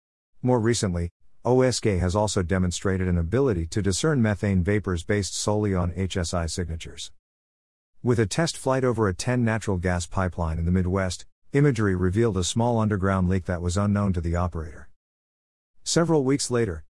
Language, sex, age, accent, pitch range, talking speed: English, male, 50-69, American, 85-110 Hz, 155 wpm